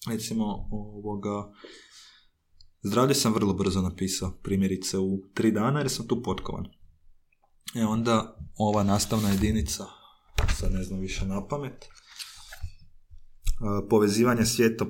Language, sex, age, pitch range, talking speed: Croatian, male, 20-39, 95-115 Hz, 115 wpm